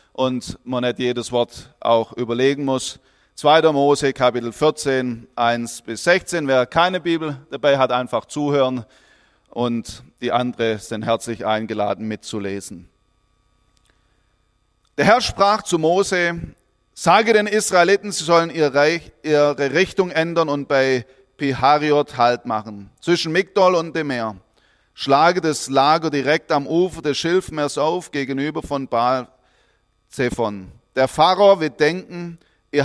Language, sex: German, male